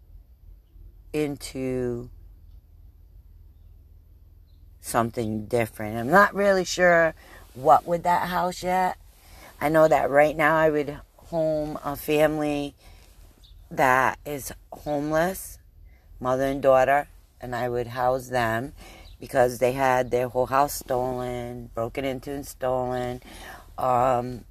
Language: English